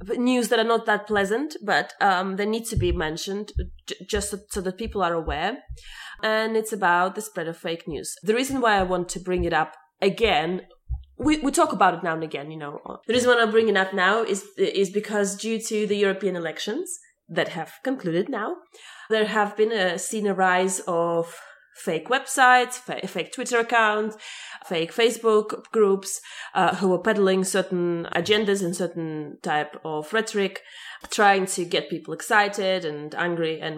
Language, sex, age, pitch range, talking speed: English, female, 20-39, 175-220 Hz, 185 wpm